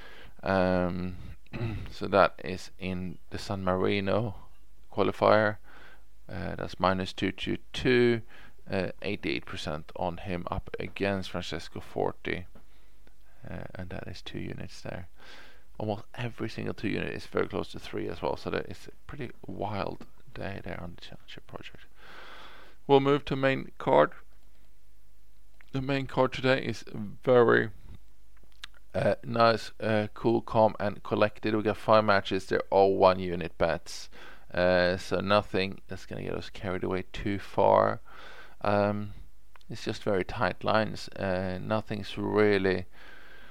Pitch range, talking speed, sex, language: 95-110 Hz, 135 wpm, male, English